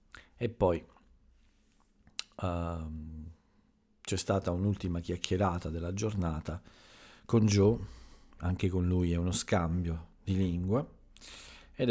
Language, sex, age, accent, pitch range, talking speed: Italian, male, 40-59, native, 85-100 Hz, 100 wpm